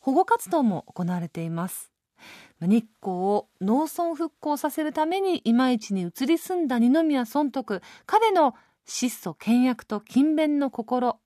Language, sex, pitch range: Japanese, female, 205-310 Hz